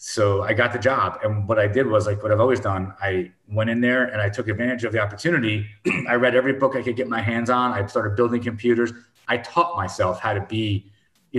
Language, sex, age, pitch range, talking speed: English, male, 30-49, 105-120 Hz, 250 wpm